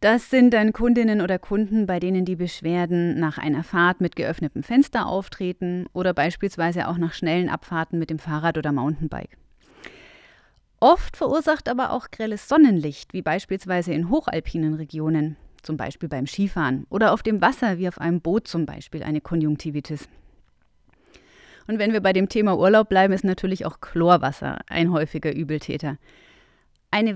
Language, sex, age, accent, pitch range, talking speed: German, female, 30-49, German, 160-215 Hz, 155 wpm